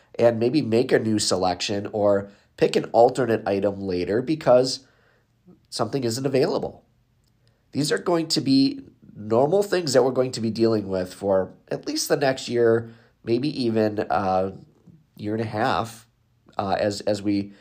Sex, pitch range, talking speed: male, 100-120 Hz, 160 wpm